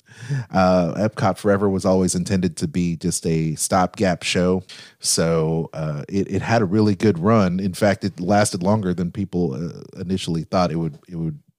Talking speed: 180 wpm